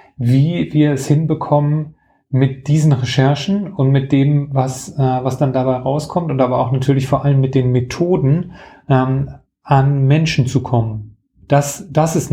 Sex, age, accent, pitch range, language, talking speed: male, 30-49, German, 130-145 Hz, German, 160 wpm